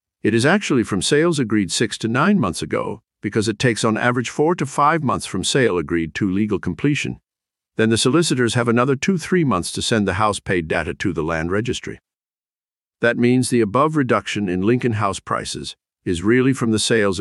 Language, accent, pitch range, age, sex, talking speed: English, American, 95-125 Hz, 50-69, male, 200 wpm